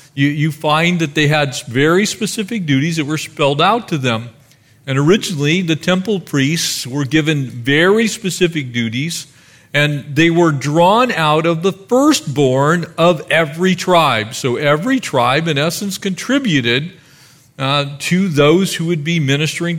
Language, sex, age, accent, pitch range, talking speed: English, male, 40-59, American, 145-195 Hz, 145 wpm